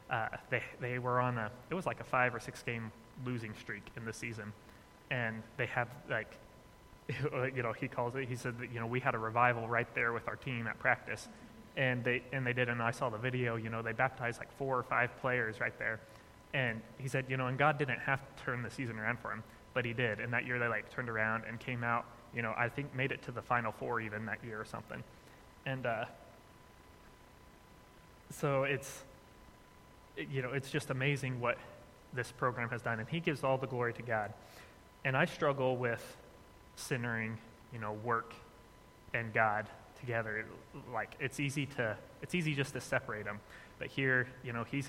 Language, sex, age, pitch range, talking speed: English, male, 20-39, 110-130 Hz, 210 wpm